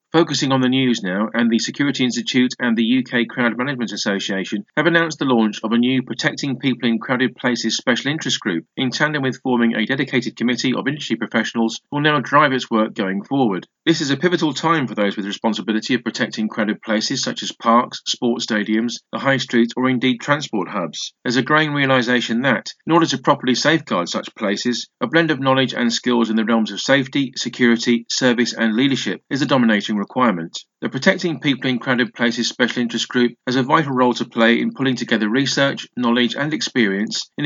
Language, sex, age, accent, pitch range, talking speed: English, male, 40-59, British, 115-135 Hz, 205 wpm